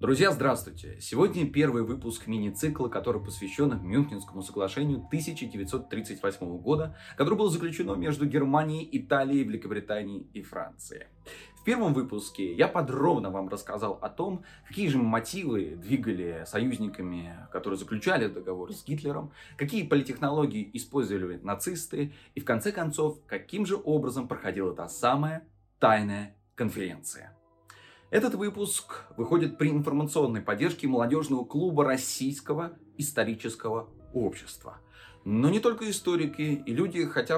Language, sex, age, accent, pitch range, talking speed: Russian, male, 20-39, native, 115-155 Hz, 120 wpm